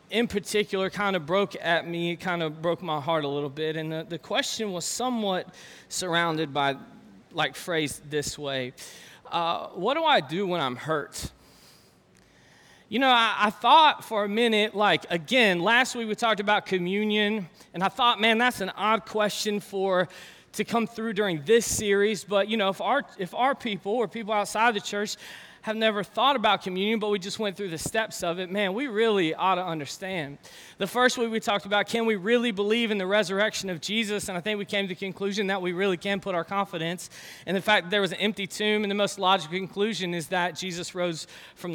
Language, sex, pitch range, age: English, male, 180-220 Hz, 20-39